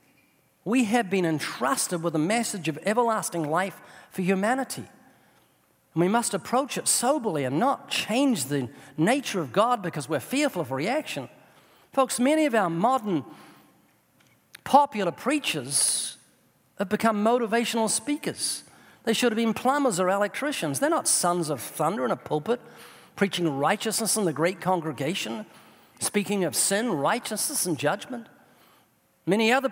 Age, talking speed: 50-69, 140 wpm